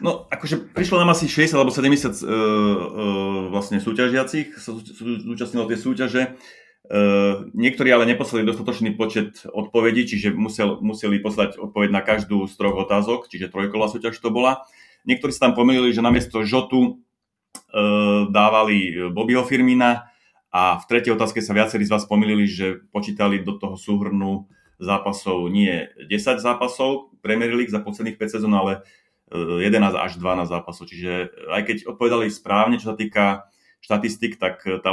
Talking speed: 160 wpm